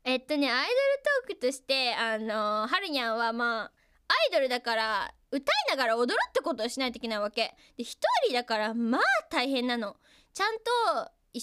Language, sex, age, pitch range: Japanese, female, 20-39, 230-315 Hz